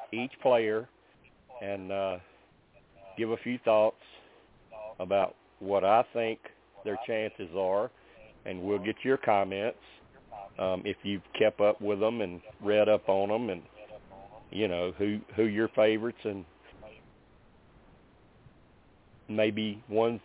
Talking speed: 125 wpm